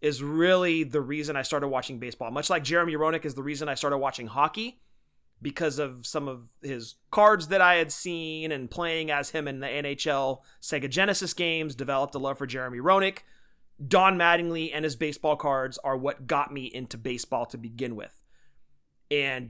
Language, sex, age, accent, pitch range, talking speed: English, male, 30-49, American, 125-160 Hz, 190 wpm